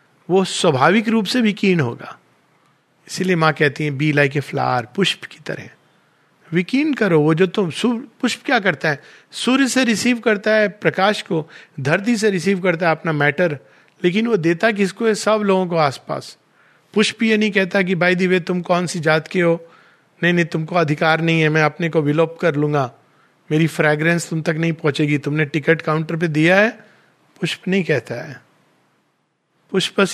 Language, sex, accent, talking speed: Hindi, male, native, 180 wpm